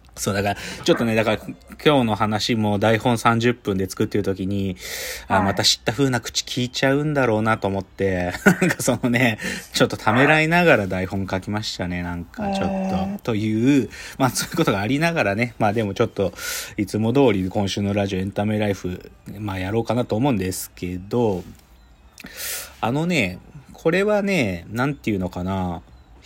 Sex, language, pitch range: male, Japanese, 95-155 Hz